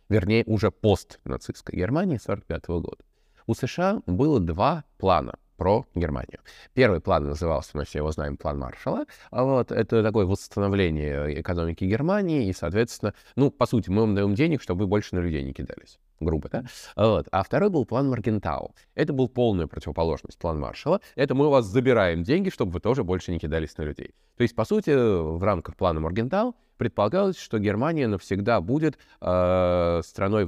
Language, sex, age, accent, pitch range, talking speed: Russian, male, 20-39, native, 85-125 Hz, 165 wpm